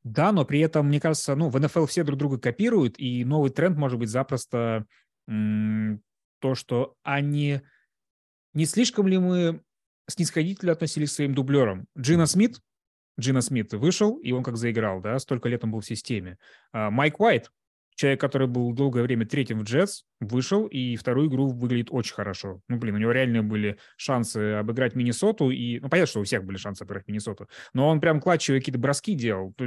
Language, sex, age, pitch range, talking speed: Russian, male, 20-39, 115-155 Hz, 180 wpm